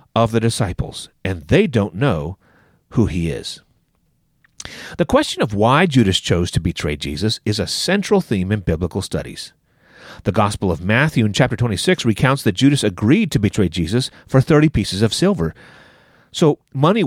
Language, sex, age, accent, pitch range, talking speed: English, male, 40-59, American, 105-140 Hz, 165 wpm